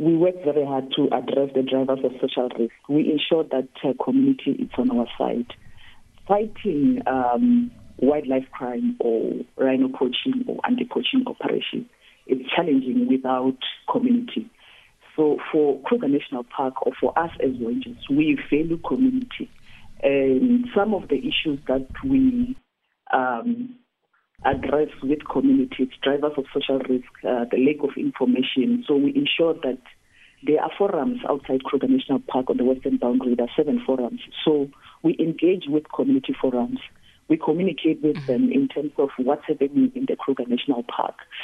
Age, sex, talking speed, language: 40-59, female, 155 wpm, English